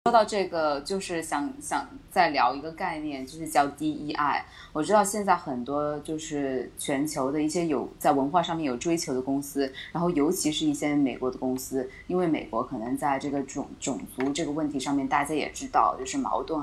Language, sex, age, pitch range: Chinese, female, 20-39, 145-185 Hz